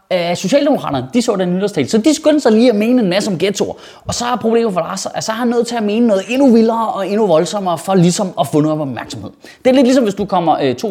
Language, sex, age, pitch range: Danish, male, 30-49, 180-240 Hz